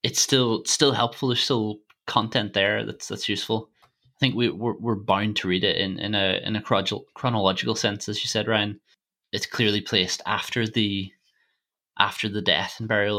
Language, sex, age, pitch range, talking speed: English, male, 20-39, 100-115 Hz, 185 wpm